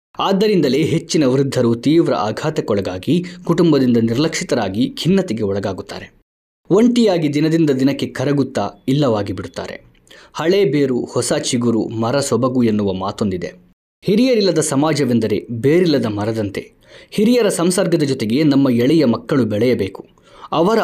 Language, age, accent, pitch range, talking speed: Kannada, 20-39, native, 110-160 Hz, 100 wpm